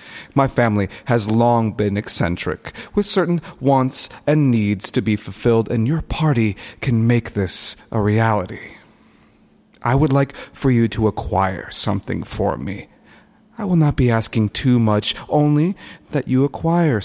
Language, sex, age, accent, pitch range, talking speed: English, male, 40-59, American, 110-135 Hz, 150 wpm